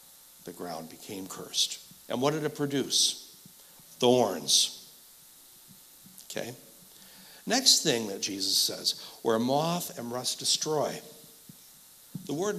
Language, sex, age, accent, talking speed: English, male, 60-79, American, 110 wpm